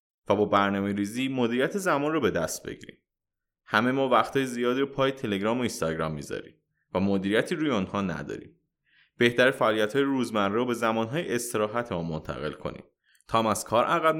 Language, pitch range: Persian, 105-150 Hz